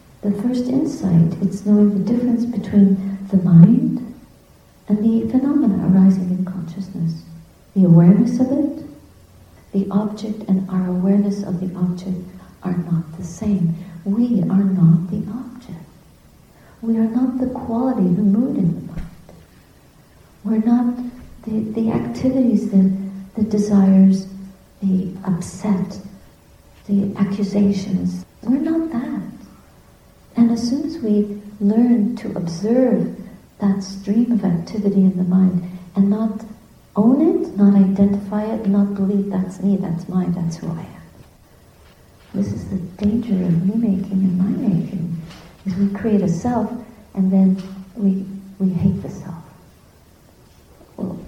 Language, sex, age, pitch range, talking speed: English, female, 50-69, 185-225 Hz, 135 wpm